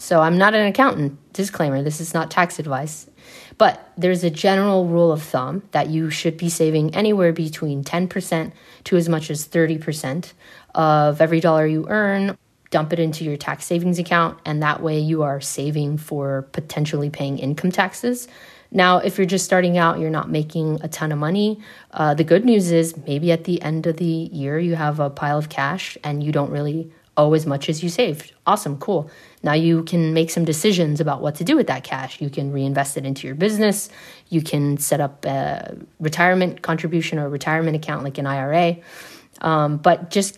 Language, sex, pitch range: English, female, 150-175 Hz